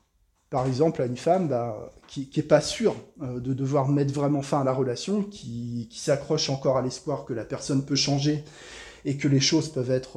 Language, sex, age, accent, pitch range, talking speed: French, male, 20-39, French, 130-155 Hz, 220 wpm